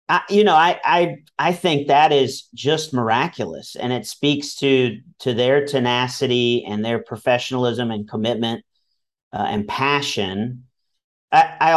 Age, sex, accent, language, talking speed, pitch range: 40-59, male, American, English, 145 wpm, 115-145 Hz